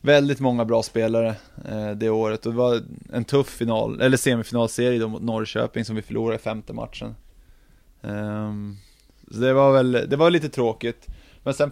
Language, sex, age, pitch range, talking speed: Swedish, male, 20-39, 110-125 Hz, 165 wpm